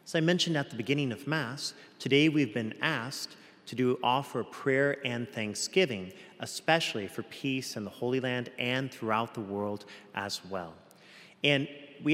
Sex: male